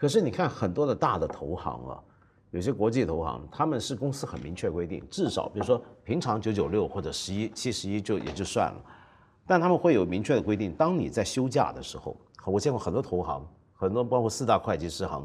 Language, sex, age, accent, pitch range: Chinese, male, 50-69, native, 95-145 Hz